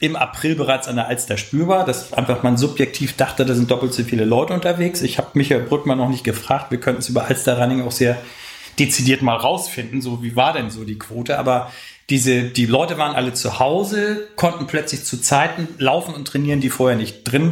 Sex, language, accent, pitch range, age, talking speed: male, German, German, 125-145 Hz, 40-59, 210 wpm